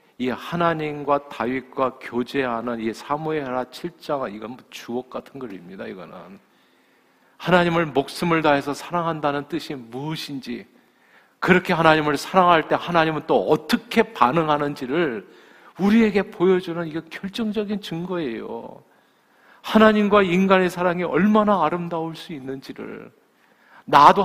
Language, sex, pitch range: Korean, male, 135-185 Hz